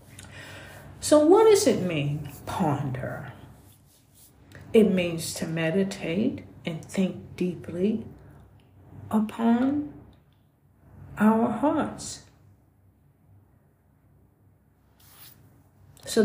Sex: female